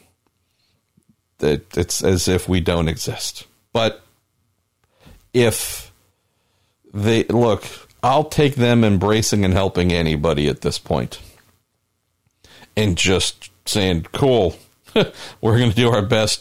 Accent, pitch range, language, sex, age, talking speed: American, 90-115 Hz, English, male, 50-69, 105 wpm